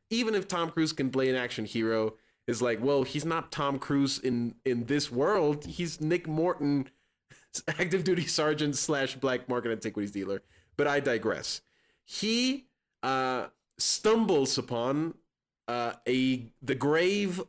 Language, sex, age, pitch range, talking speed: English, male, 20-39, 120-160 Hz, 145 wpm